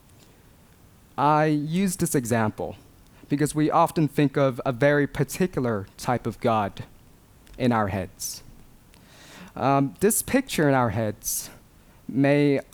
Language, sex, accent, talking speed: English, male, American, 120 wpm